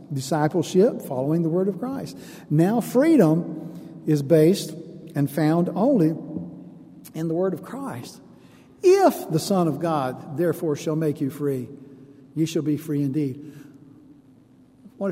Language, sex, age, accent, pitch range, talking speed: English, male, 60-79, American, 155-205 Hz, 135 wpm